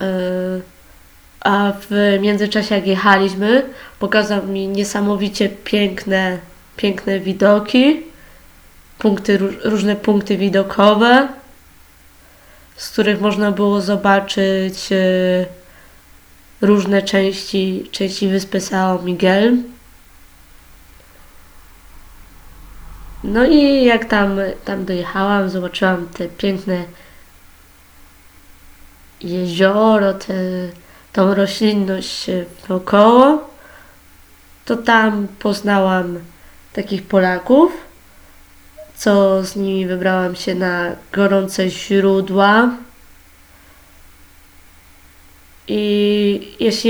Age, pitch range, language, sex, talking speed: 20-39, 170-205 Hz, Polish, female, 70 wpm